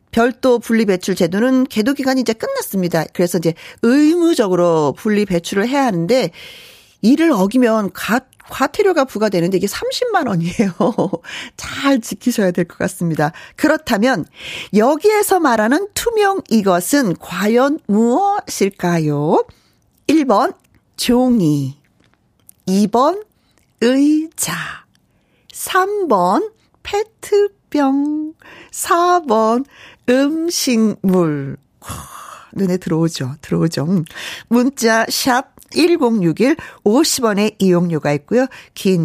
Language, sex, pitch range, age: Korean, female, 190-320 Hz, 40-59